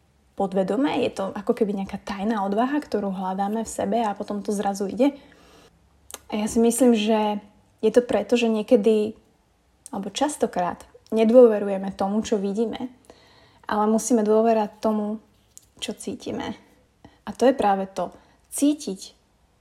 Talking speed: 135 wpm